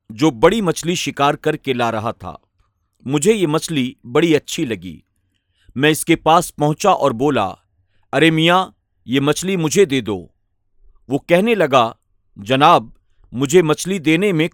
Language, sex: Urdu, male